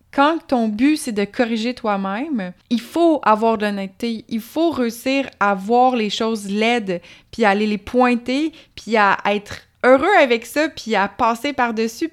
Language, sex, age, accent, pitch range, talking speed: French, female, 20-39, Canadian, 210-260 Hz, 170 wpm